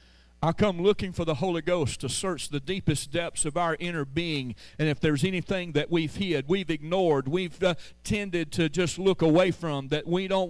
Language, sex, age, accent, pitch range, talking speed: English, male, 40-59, American, 175-245 Hz, 205 wpm